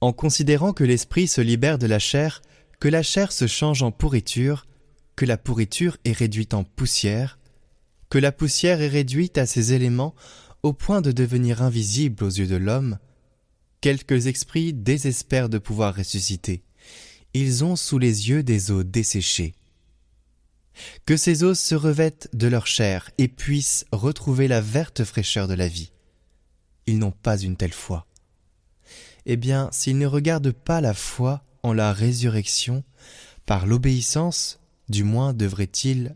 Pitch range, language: 105-140 Hz, French